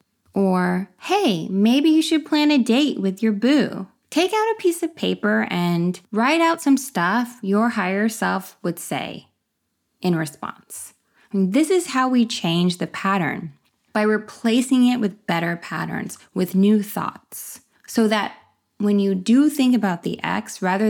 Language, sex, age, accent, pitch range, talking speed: English, female, 20-39, American, 175-230 Hz, 160 wpm